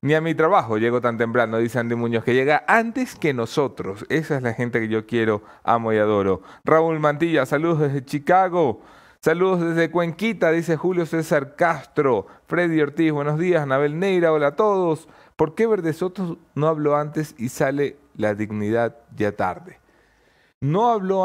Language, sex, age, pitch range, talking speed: English, male, 30-49, 110-155 Hz, 170 wpm